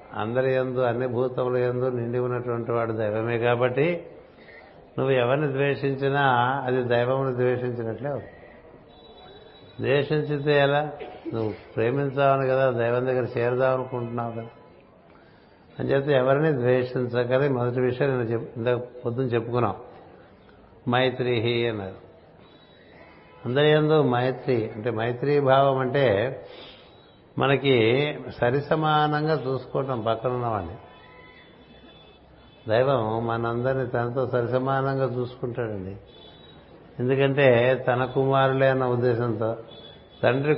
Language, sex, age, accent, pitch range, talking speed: Telugu, male, 60-79, native, 120-135 Hz, 90 wpm